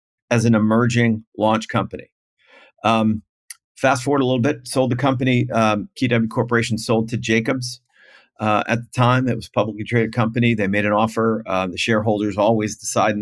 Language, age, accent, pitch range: English, 50-69, American, 110-125 Hz